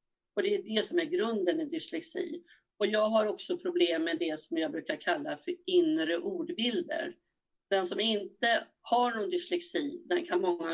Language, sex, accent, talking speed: Swedish, female, native, 180 wpm